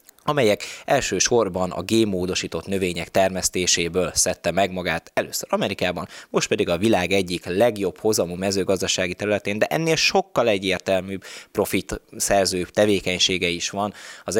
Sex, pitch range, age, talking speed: male, 90-115 Hz, 20-39, 125 wpm